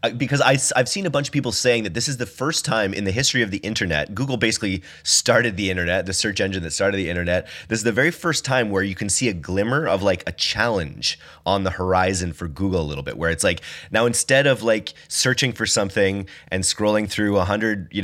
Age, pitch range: 30-49, 90-115 Hz